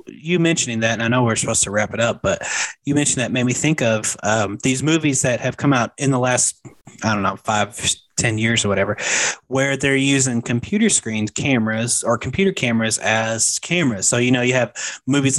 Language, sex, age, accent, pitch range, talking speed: English, male, 20-39, American, 110-135 Hz, 215 wpm